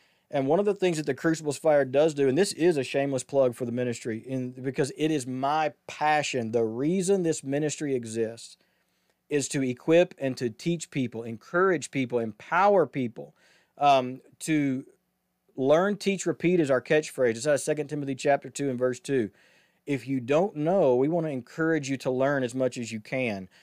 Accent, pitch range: American, 130-165 Hz